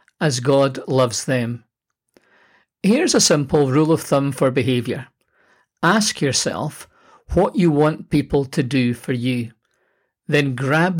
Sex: male